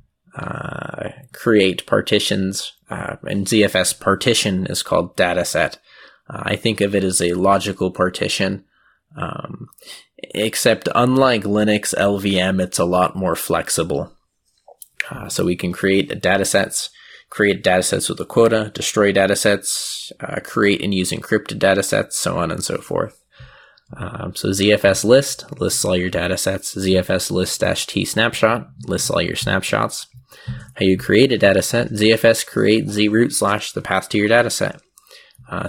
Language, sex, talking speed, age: English, male, 145 wpm, 20-39